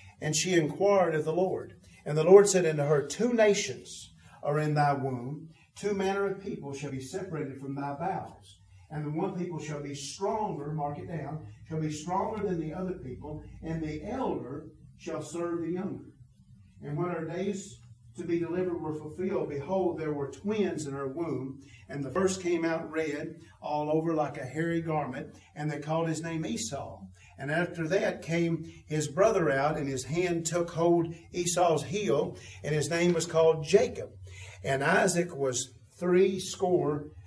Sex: male